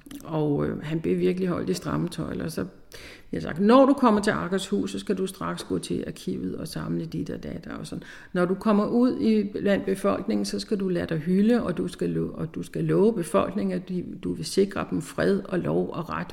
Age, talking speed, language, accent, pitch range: 60-79, 225 wpm, Danish, native, 165-210 Hz